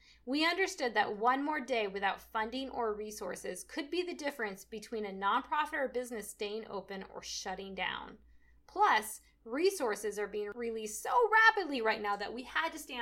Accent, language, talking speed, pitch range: American, English, 175 wpm, 210-305 Hz